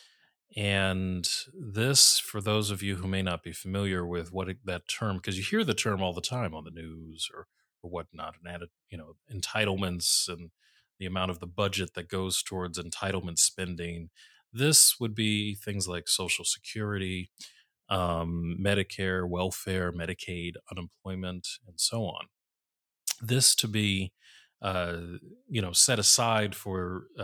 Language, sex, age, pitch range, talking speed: English, male, 30-49, 90-105 Hz, 150 wpm